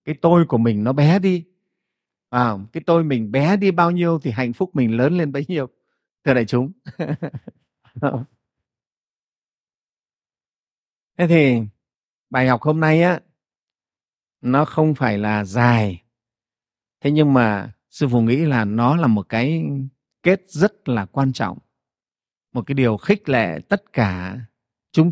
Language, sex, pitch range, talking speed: Vietnamese, male, 115-165 Hz, 150 wpm